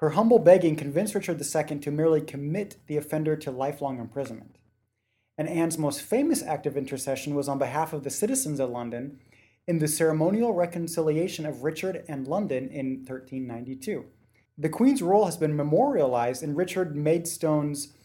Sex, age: male, 30-49